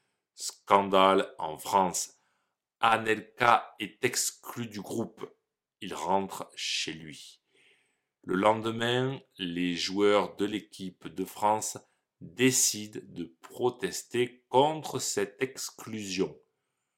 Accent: French